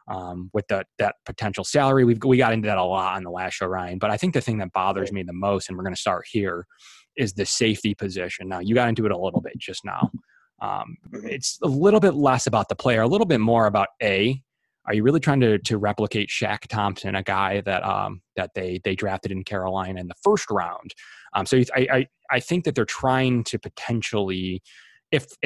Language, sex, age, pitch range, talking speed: English, male, 20-39, 95-120 Hz, 230 wpm